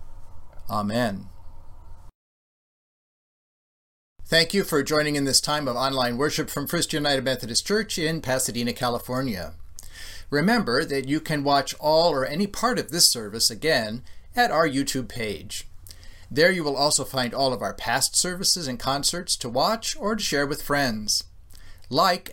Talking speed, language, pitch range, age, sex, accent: 150 wpm, English, 105-160 Hz, 40-59, male, American